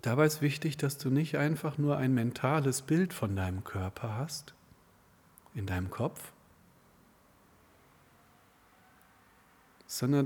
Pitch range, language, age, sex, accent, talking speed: 105-150 Hz, German, 40-59, male, German, 110 wpm